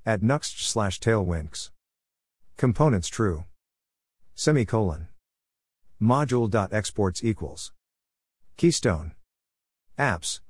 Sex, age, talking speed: male, 50-69, 65 wpm